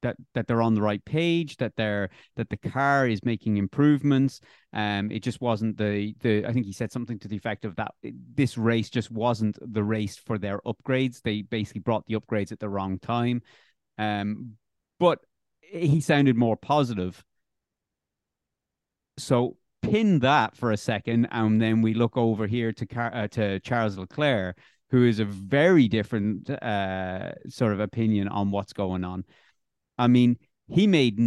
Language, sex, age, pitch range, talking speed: English, male, 30-49, 100-125 Hz, 175 wpm